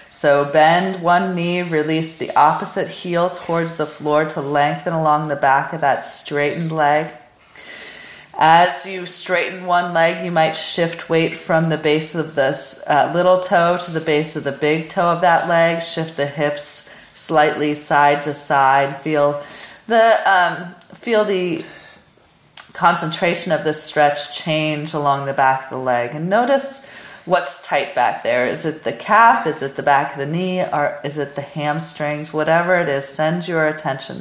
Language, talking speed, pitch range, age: English, 170 wpm, 145-175 Hz, 30-49